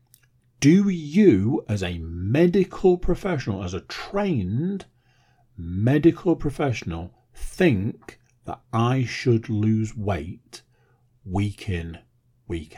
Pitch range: 100-125 Hz